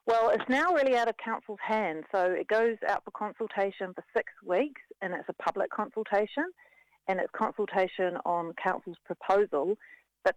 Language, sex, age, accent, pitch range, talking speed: English, female, 40-59, Australian, 170-210 Hz, 170 wpm